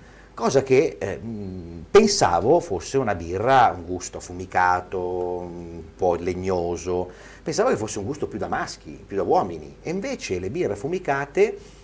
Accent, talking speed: native, 145 wpm